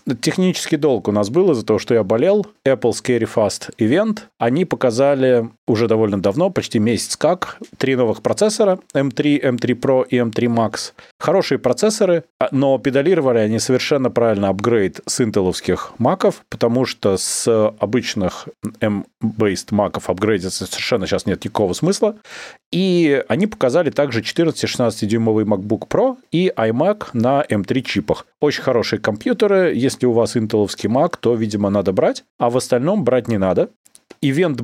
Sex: male